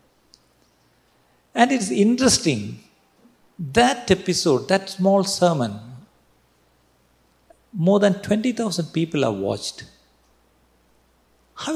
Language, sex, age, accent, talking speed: Malayalam, male, 50-69, native, 80 wpm